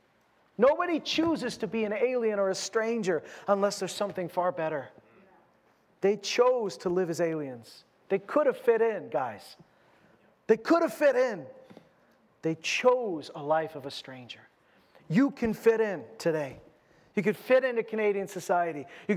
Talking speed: 155 wpm